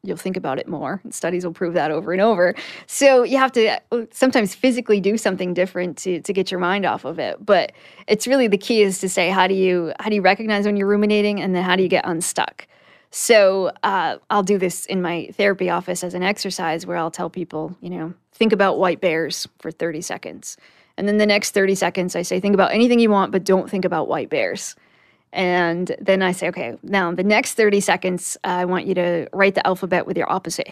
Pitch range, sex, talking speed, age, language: 180-215 Hz, female, 230 wpm, 20-39, English